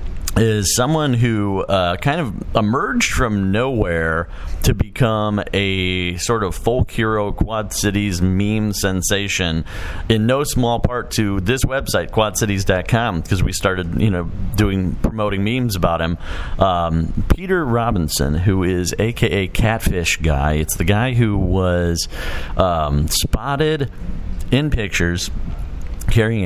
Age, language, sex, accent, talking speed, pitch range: 40-59, English, male, American, 125 wpm, 85-105 Hz